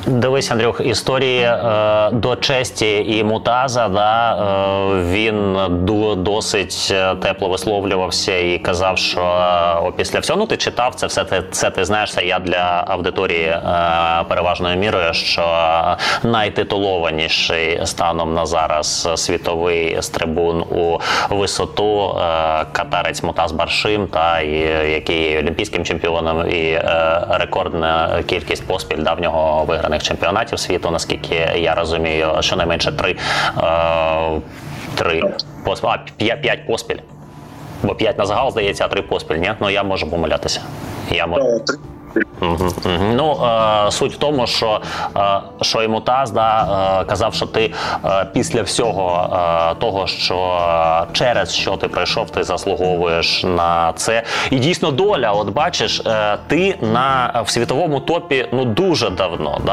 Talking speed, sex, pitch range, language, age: 120 wpm, male, 85-110 Hz, Ukrainian, 20-39